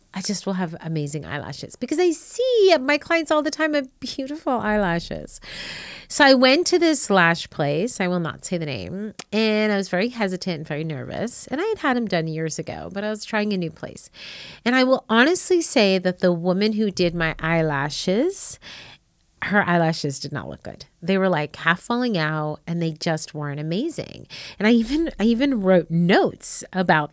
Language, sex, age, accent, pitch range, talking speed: English, female, 30-49, American, 175-250 Hz, 195 wpm